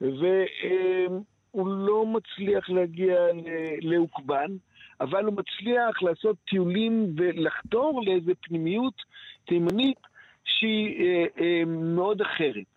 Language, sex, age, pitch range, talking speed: Hebrew, male, 50-69, 155-220 Hz, 80 wpm